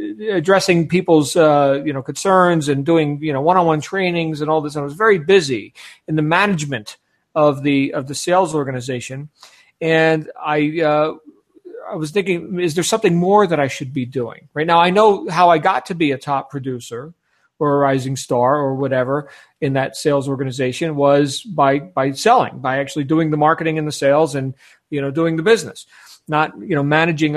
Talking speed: 190 wpm